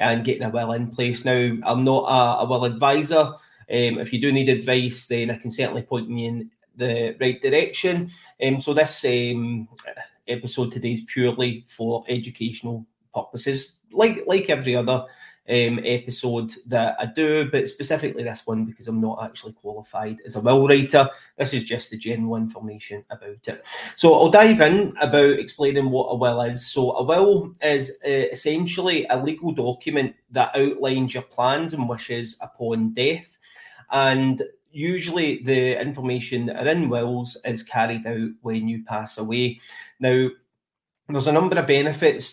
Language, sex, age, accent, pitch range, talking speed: English, male, 30-49, British, 120-145 Hz, 165 wpm